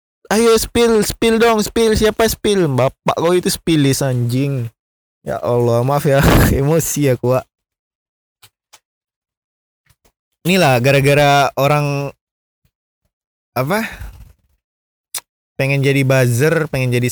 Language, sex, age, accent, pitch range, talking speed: Indonesian, male, 20-39, native, 115-170 Hz, 100 wpm